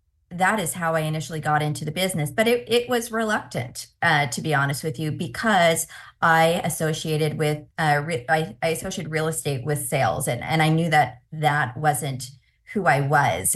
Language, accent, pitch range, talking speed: English, American, 150-170 Hz, 190 wpm